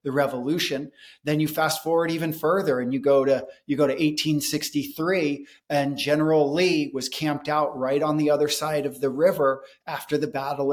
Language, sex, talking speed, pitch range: English, male, 185 wpm, 140-155 Hz